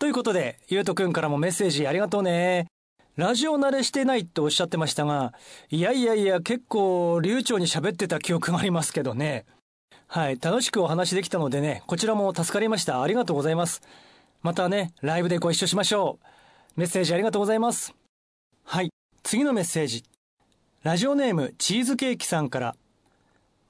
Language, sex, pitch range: Japanese, male, 160-220 Hz